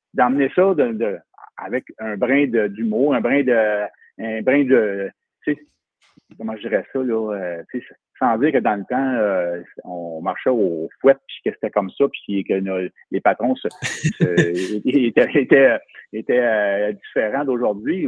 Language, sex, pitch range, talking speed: English, male, 110-140 Hz, 165 wpm